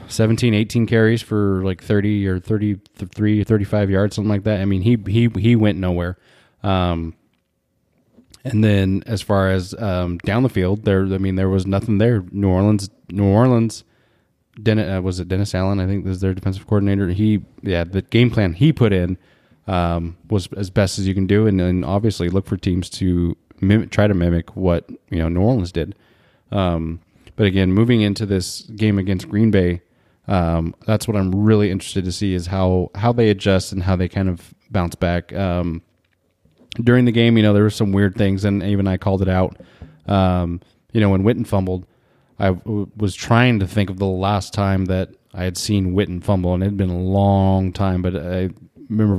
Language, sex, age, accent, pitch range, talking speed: English, male, 20-39, American, 90-105 Hz, 205 wpm